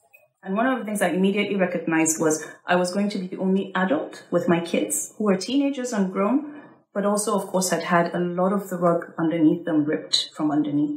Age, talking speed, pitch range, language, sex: 30-49, 225 wpm, 170-225 Hz, English, female